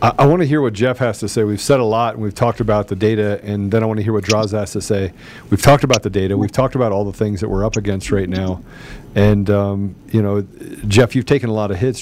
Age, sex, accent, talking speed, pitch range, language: 40-59, male, American, 290 wpm, 100-125 Hz, English